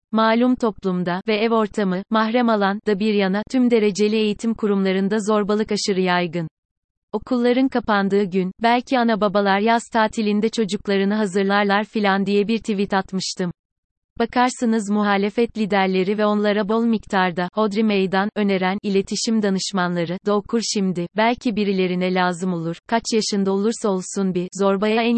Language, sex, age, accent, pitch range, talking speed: Turkish, female, 30-49, native, 190-225 Hz, 140 wpm